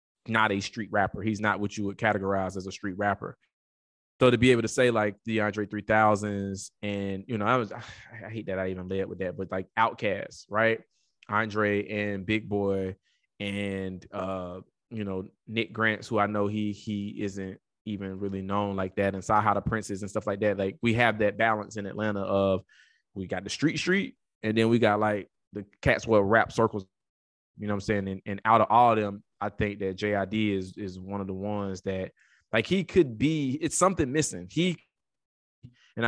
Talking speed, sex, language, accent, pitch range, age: 205 wpm, male, English, American, 100-120 Hz, 20-39